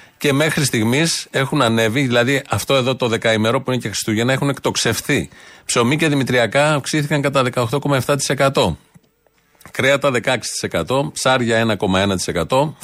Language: Greek